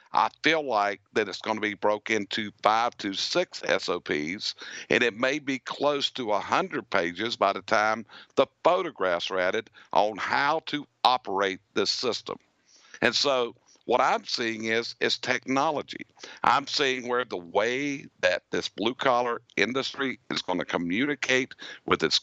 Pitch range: 110-130 Hz